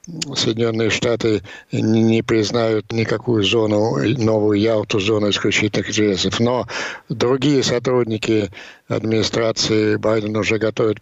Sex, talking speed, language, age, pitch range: male, 100 wpm, Ukrainian, 60-79, 110-135 Hz